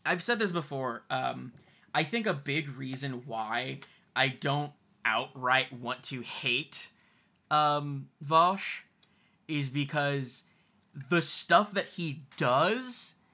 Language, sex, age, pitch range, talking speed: English, male, 10-29, 135-175 Hz, 115 wpm